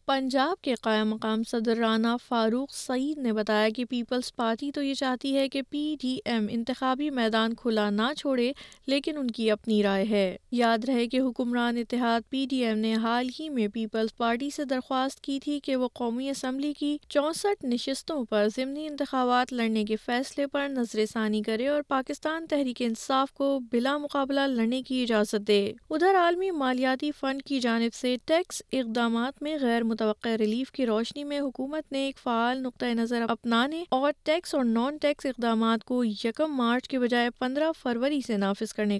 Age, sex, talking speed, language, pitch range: 20-39, female, 180 wpm, Urdu, 230-275 Hz